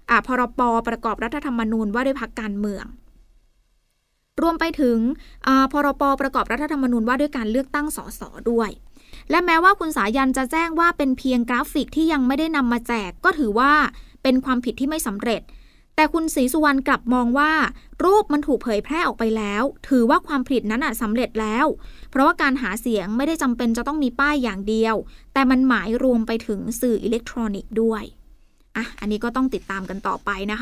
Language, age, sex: Thai, 20-39, female